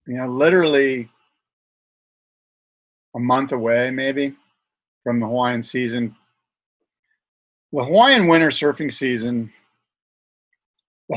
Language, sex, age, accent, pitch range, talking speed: English, male, 40-59, American, 125-170 Hz, 90 wpm